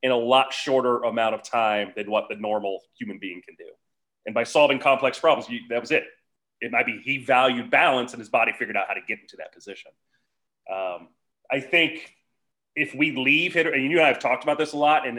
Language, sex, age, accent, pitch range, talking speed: English, male, 30-49, American, 120-155 Hz, 230 wpm